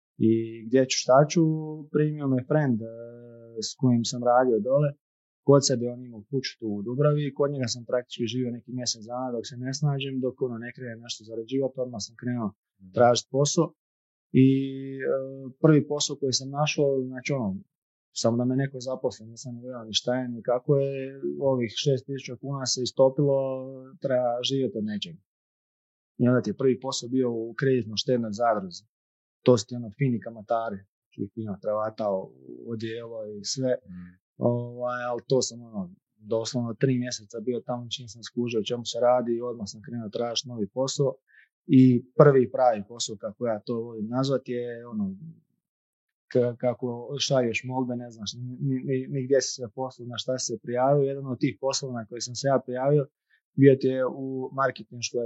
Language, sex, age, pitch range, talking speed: Croatian, male, 30-49, 115-135 Hz, 180 wpm